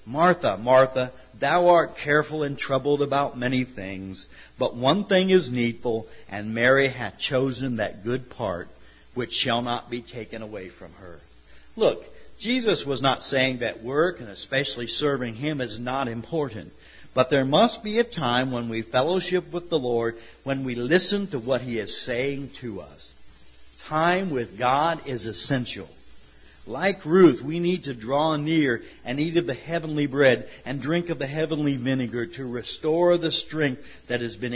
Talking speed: 170 wpm